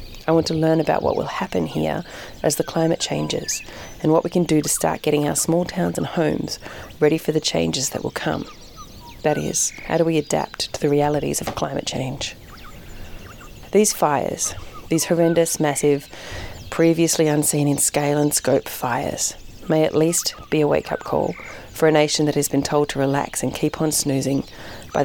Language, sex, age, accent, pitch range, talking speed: English, female, 30-49, Australian, 135-160 Hz, 185 wpm